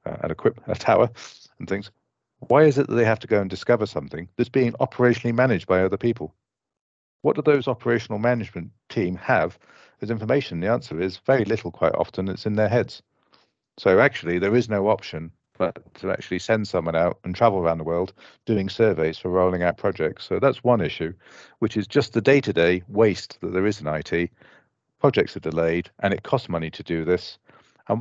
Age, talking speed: 50-69, 200 wpm